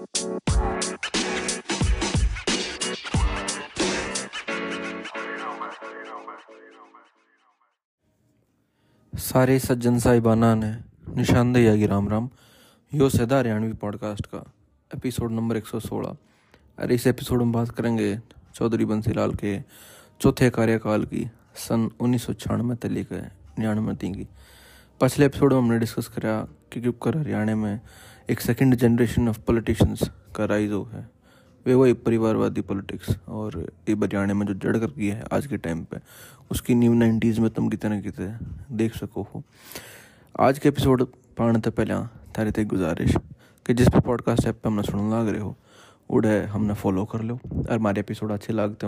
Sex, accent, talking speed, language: male, native, 135 wpm, Hindi